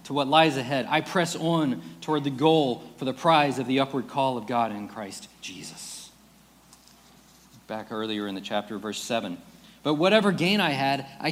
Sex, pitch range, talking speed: male, 120-170 Hz, 185 wpm